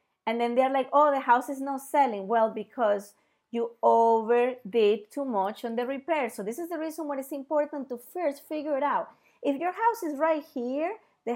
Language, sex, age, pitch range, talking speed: English, female, 30-49, 220-285 Hz, 205 wpm